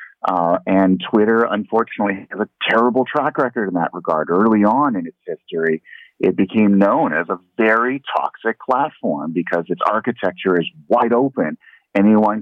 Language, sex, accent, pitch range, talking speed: English, male, American, 95-120 Hz, 155 wpm